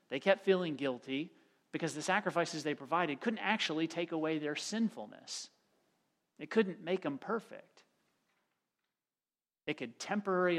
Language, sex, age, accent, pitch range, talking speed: English, male, 40-59, American, 135-170 Hz, 130 wpm